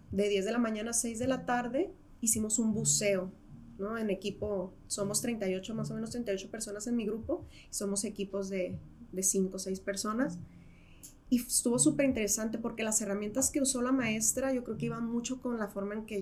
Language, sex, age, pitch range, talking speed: Spanish, female, 20-39, 200-245 Hz, 200 wpm